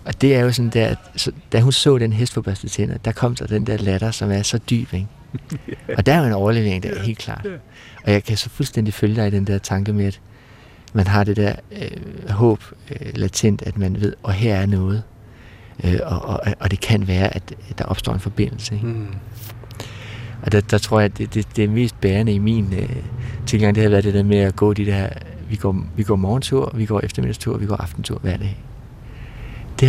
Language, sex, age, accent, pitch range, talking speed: Danish, male, 60-79, native, 100-115 Hz, 225 wpm